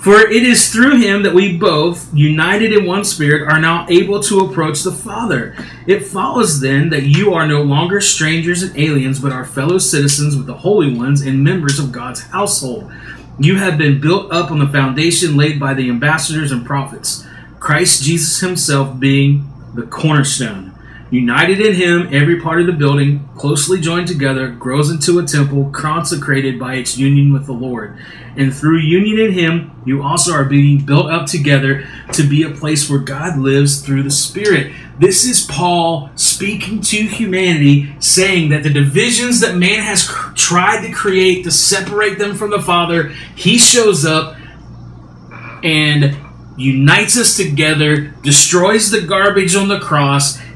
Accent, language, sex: American, English, male